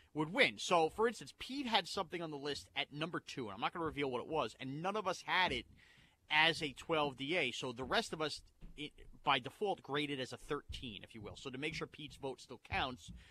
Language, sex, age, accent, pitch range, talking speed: English, male, 30-49, American, 140-190 Hz, 255 wpm